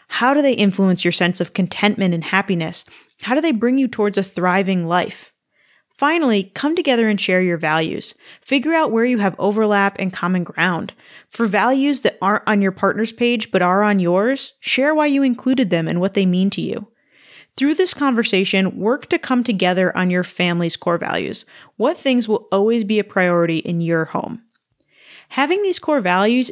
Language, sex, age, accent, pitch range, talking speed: English, female, 20-39, American, 185-245 Hz, 190 wpm